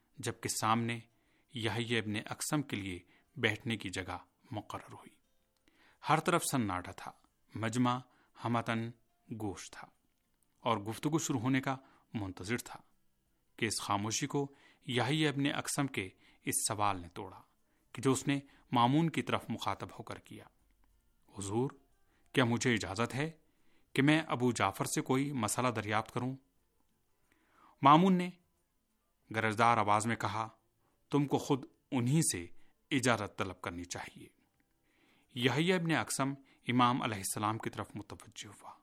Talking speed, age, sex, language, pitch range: 140 wpm, 30-49, male, Urdu, 105-140 Hz